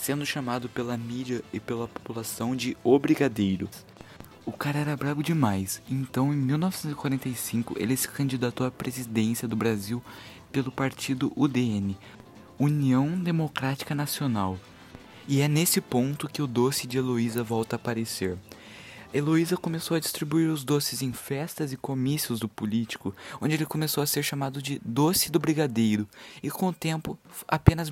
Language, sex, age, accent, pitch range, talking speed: Portuguese, male, 20-39, Brazilian, 115-150 Hz, 150 wpm